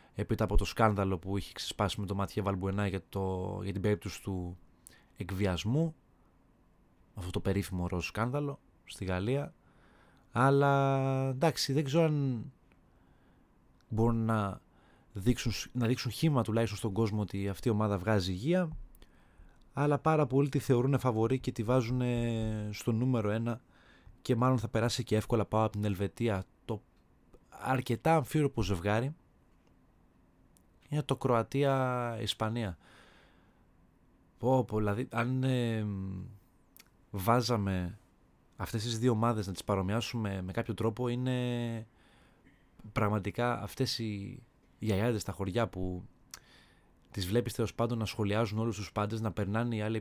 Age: 20-39